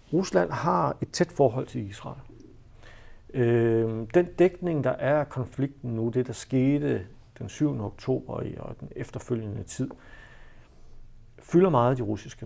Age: 60-79